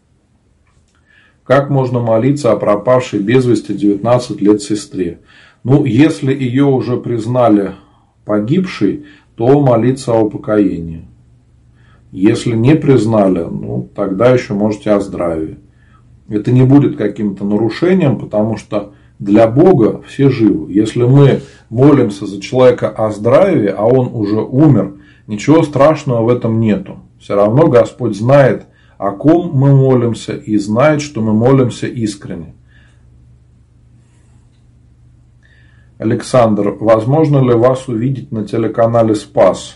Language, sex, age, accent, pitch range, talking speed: Russian, male, 40-59, native, 105-130 Hz, 120 wpm